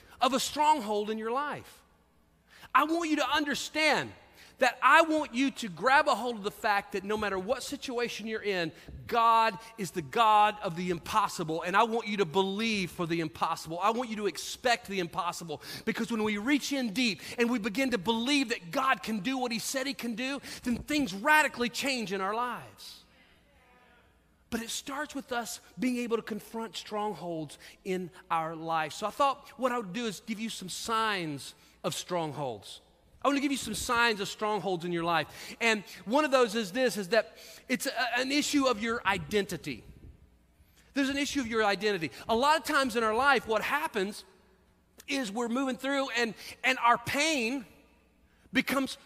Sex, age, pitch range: male, 40-59, 195-265 Hz